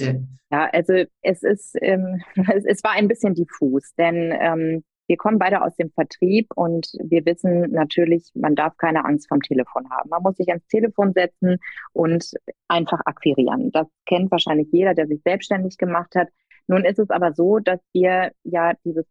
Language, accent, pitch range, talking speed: German, German, 165-190 Hz, 180 wpm